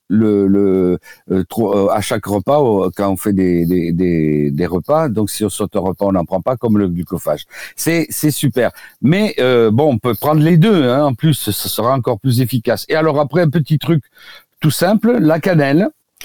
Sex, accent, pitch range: male, French, 105-150 Hz